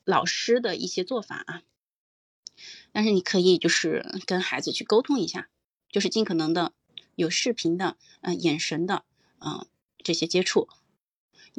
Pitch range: 170-225 Hz